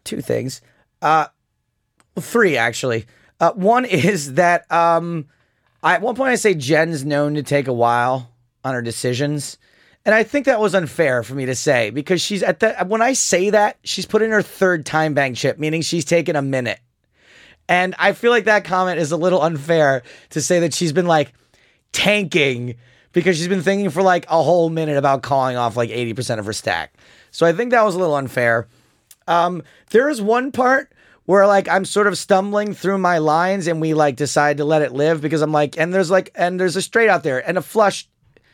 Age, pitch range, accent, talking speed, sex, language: 30-49, 150-195 Hz, American, 210 wpm, male, English